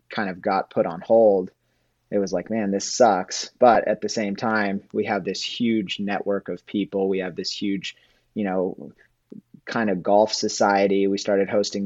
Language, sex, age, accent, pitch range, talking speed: English, male, 30-49, American, 95-110 Hz, 185 wpm